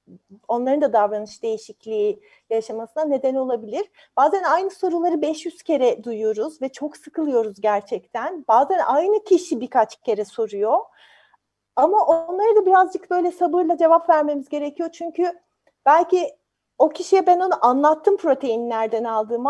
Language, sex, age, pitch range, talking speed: Turkish, female, 40-59, 245-350 Hz, 125 wpm